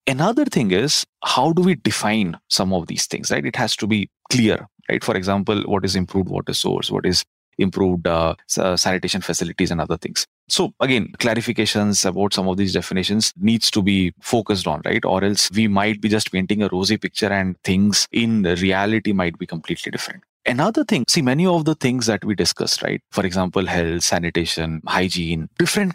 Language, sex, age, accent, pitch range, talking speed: English, male, 30-49, Indian, 95-130 Hz, 190 wpm